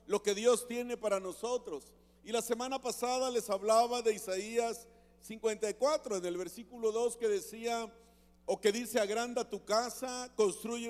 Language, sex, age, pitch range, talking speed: Spanish, male, 50-69, 175-230 Hz, 155 wpm